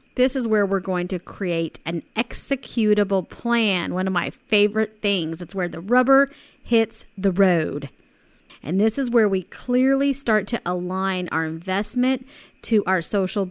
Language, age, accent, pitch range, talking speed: English, 30-49, American, 180-235 Hz, 160 wpm